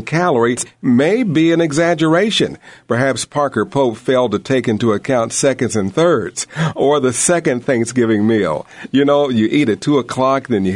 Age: 50-69